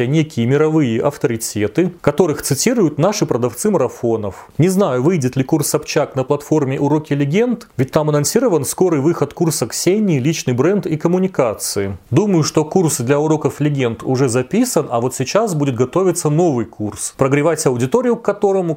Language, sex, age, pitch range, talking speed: Russian, male, 30-49, 130-175 Hz, 155 wpm